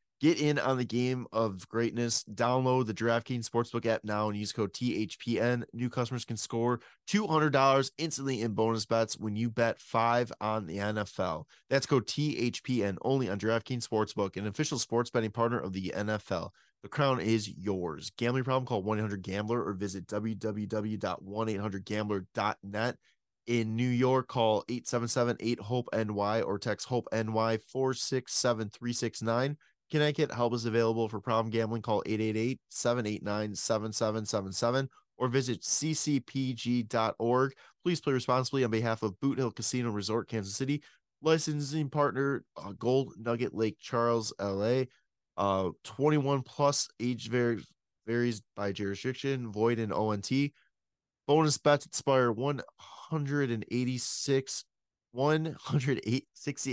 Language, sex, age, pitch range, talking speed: English, male, 20-39, 110-130 Hz, 135 wpm